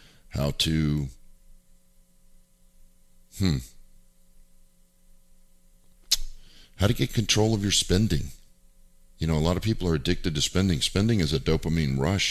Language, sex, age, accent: English, male, 50-69, American